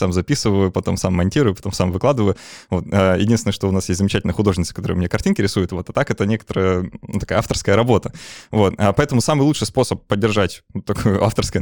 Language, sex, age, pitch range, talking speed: Russian, male, 20-39, 95-110 Hz, 200 wpm